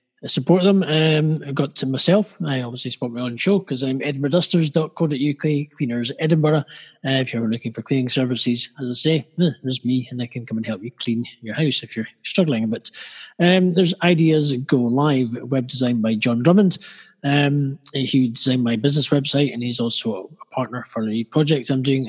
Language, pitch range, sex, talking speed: English, 120-155 Hz, male, 195 wpm